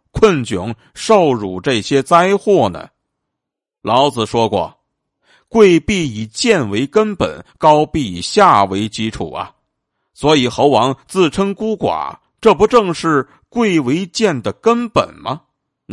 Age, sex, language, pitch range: 50-69, male, Chinese, 115-190 Hz